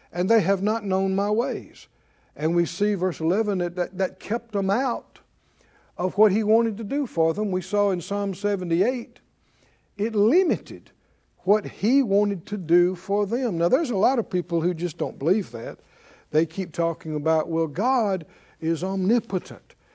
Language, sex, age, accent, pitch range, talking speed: English, male, 60-79, American, 170-220 Hz, 175 wpm